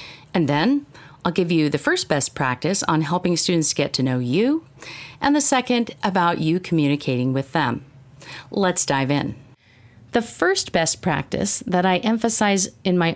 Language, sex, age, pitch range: English, female, 40-59, 140-205 Hz